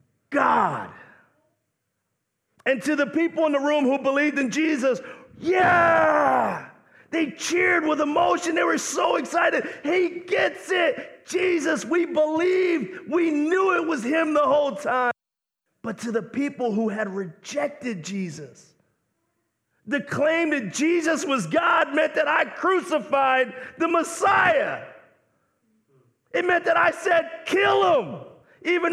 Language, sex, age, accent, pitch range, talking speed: English, male, 40-59, American, 245-330 Hz, 130 wpm